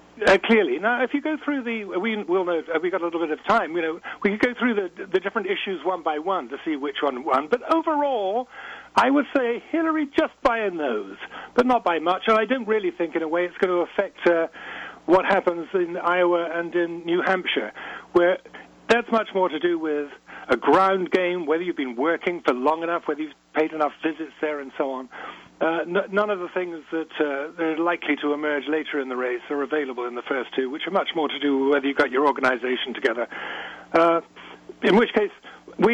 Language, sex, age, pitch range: English, male, 50-69, 160-230 Hz